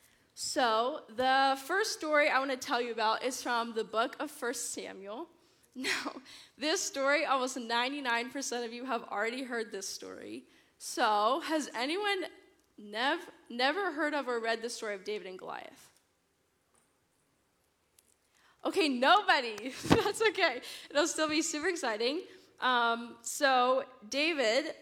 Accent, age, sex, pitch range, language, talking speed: American, 10-29, female, 220-285 Hz, English, 135 wpm